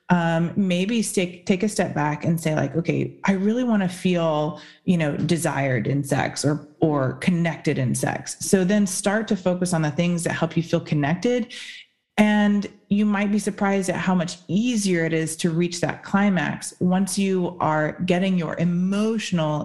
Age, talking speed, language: 30-49, 185 wpm, English